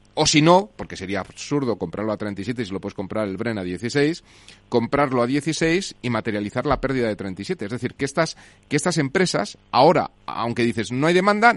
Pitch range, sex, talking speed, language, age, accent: 110-165 Hz, male, 200 wpm, Spanish, 30-49, Spanish